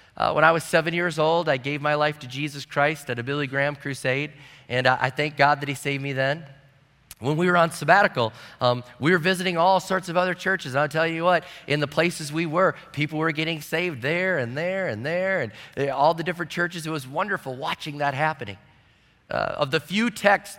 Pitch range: 140-180 Hz